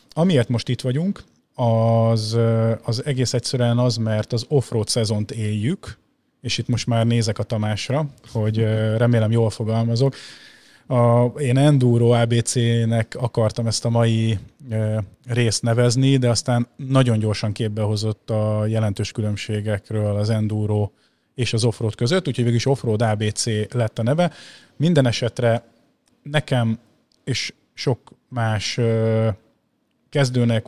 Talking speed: 130 wpm